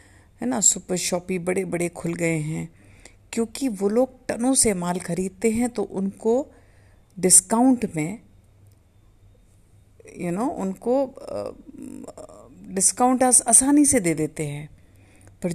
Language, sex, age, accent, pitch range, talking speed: Hindi, female, 50-69, native, 155-225 Hz, 135 wpm